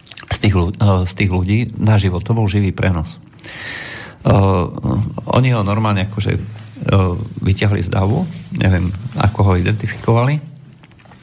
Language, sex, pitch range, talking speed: Slovak, male, 95-115 Hz, 120 wpm